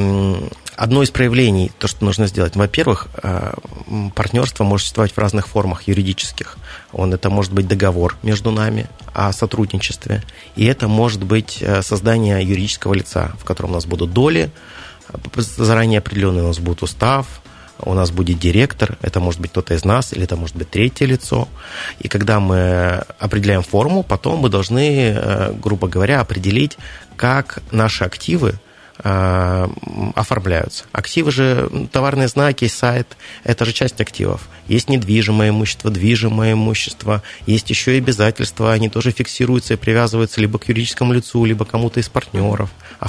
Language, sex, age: Russian, male, 30-49